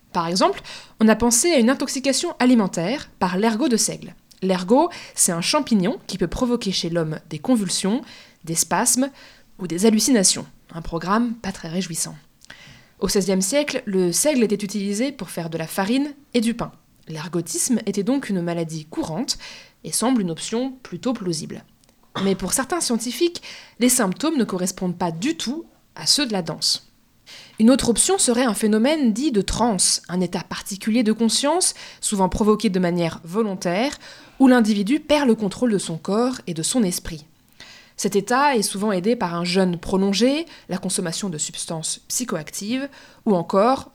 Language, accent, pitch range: French, French, 185-250 Hz